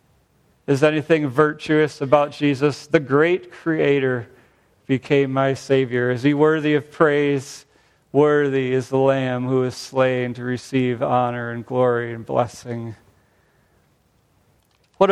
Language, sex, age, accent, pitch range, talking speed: English, male, 40-59, American, 125-150 Hz, 125 wpm